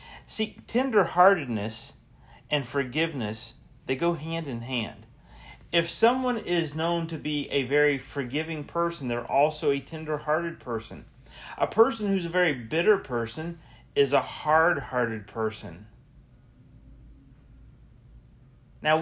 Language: English